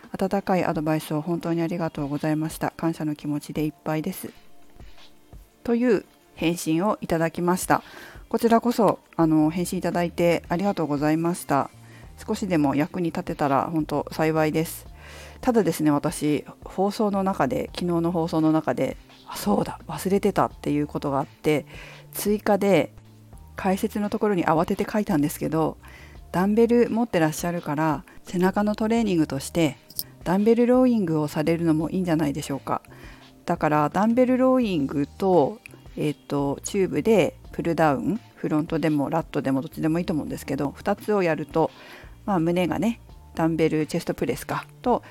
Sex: female